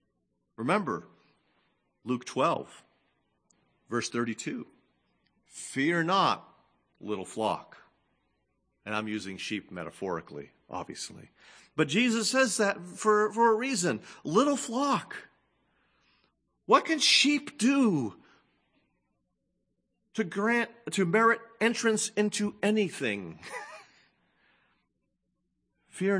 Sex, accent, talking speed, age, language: male, American, 85 wpm, 40-59, English